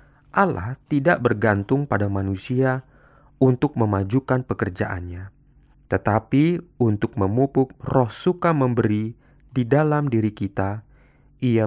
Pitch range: 105-140 Hz